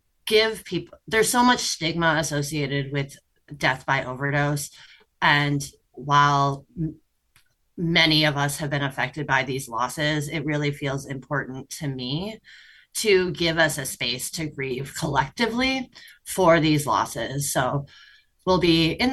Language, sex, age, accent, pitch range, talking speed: English, female, 30-49, American, 145-190 Hz, 135 wpm